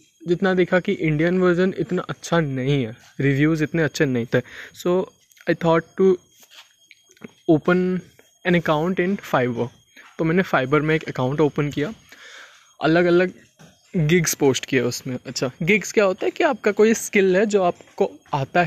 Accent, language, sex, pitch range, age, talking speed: native, Hindi, male, 145-185 Hz, 20-39, 160 wpm